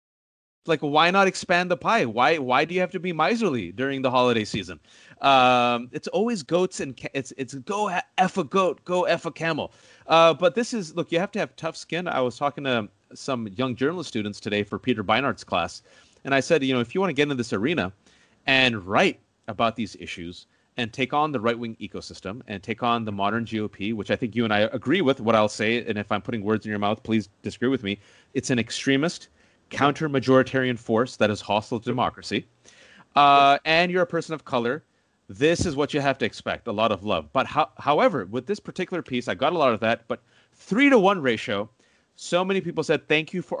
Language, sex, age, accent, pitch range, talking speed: English, male, 30-49, American, 115-165 Hz, 225 wpm